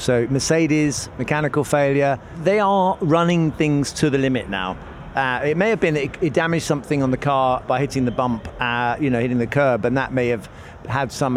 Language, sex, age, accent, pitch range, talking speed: English, male, 50-69, British, 120-150 Hz, 210 wpm